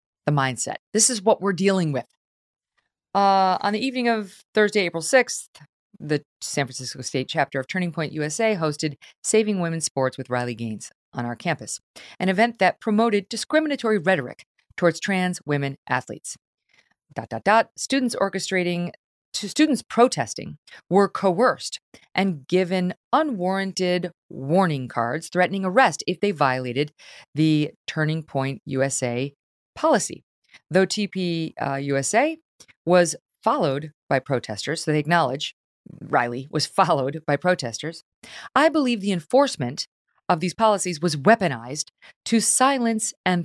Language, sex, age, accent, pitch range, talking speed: English, female, 40-59, American, 145-205 Hz, 135 wpm